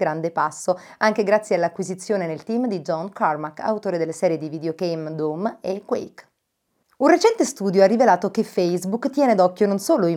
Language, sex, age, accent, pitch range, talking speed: Italian, female, 30-49, native, 170-220 Hz, 175 wpm